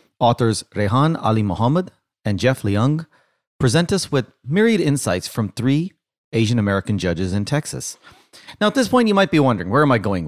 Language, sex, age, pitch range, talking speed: English, male, 30-49, 100-145 Hz, 180 wpm